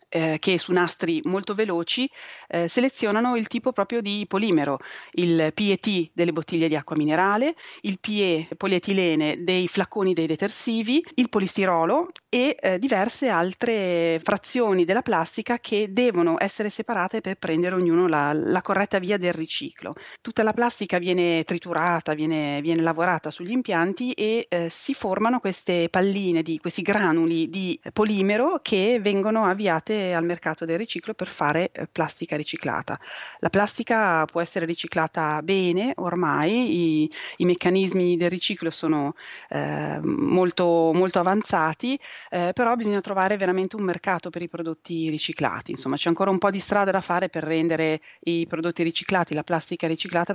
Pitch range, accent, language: 160-200 Hz, native, Italian